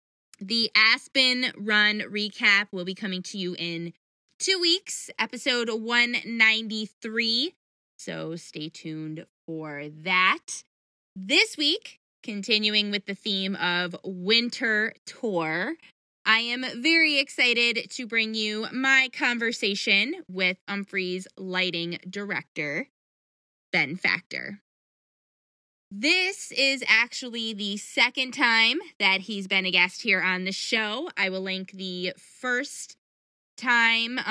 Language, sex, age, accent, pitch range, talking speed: English, female, 20-39, American, 185-240 Hz, 110 wpm